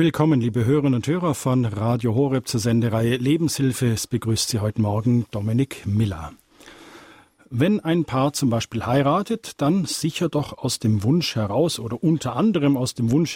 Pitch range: 120-155 Hz